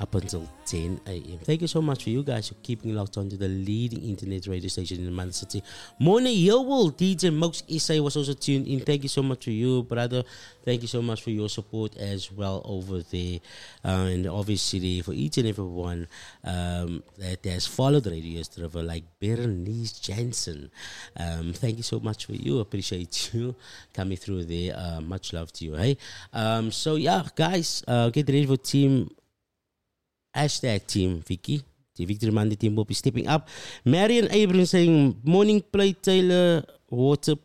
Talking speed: 185 wpm